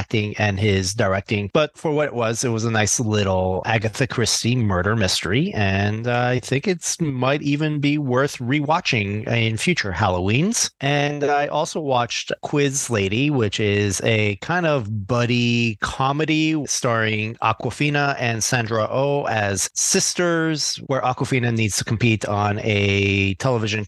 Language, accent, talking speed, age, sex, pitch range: English, American, 150 wpm, 30-49, male, 105-135 Hz